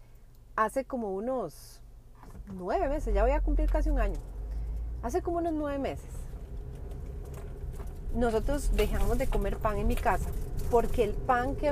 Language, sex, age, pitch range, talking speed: Spanish, female, 30-49, 175-270 Hz, 150 wpm